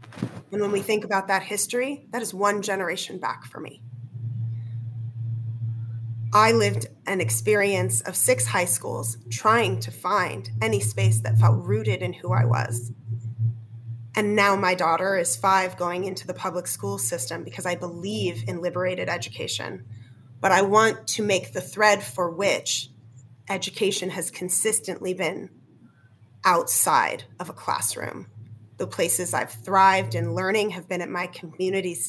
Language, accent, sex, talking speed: English, American, female, 150 wpm